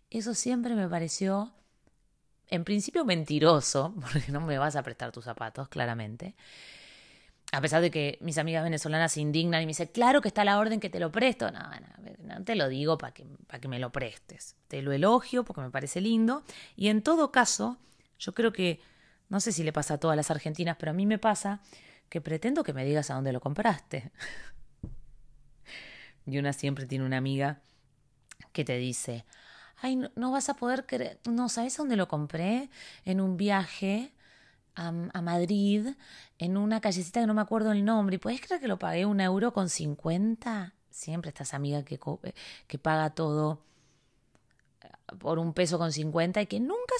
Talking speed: 190 wpm